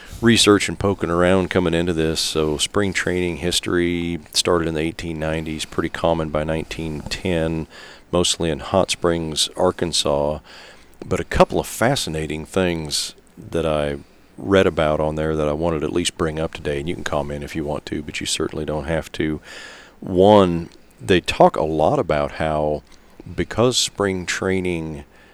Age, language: 40-59, English